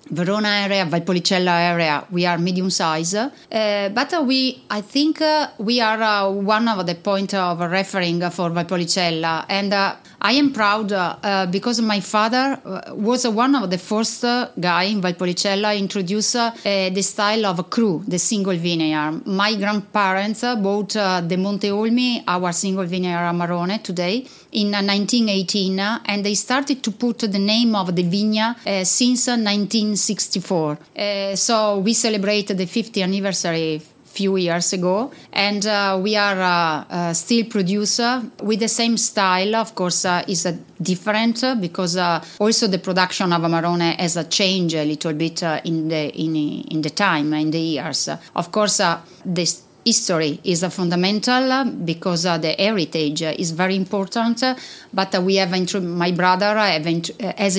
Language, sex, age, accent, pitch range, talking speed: English, female, 30-49, Italian, 175-215 Hz, 170 wpm